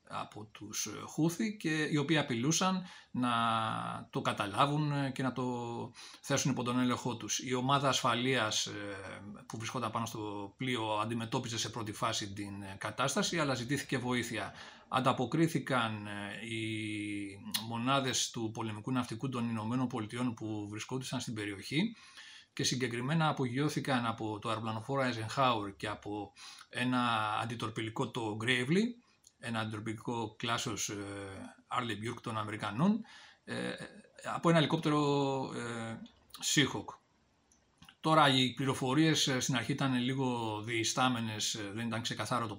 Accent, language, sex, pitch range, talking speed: Spanish, Greek, male, 110-135 Hz, 125 wpm